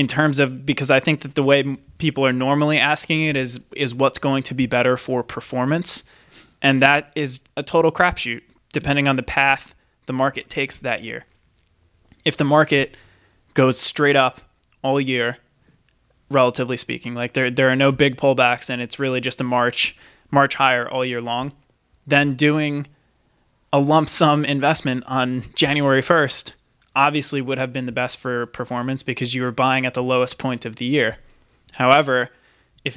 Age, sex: 20-39, male